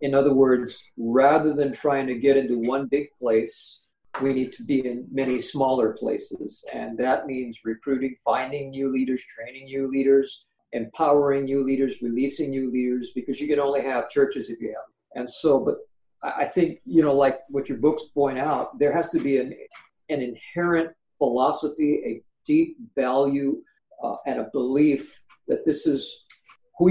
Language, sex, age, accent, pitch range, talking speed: English, male, 50-69, American, 130-155 Hz, 175 wpm